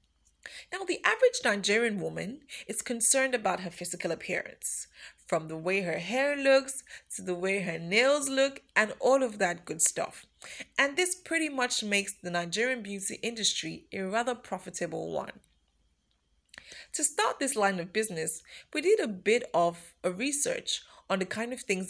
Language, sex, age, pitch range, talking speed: English, female, 20-39, 175-255 Hz, 165 wpm